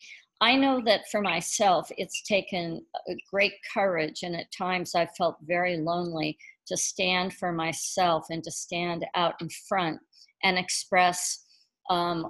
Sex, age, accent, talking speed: female, 50-69, American, 140 wpm